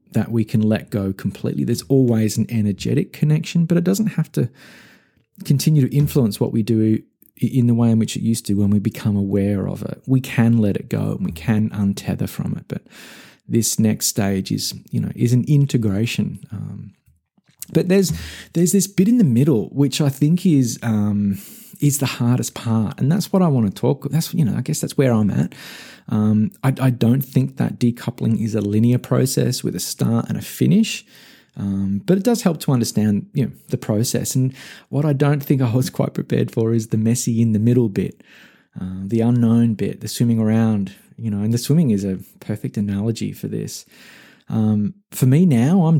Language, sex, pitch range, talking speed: English, male, 105-145 Hz, 210 wpm